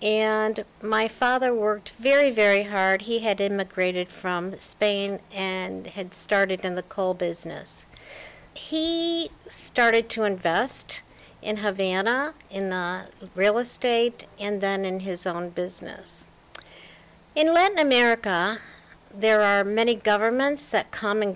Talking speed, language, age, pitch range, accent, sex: 125 wpm, English, 60-79, 190-235 Hz, American, female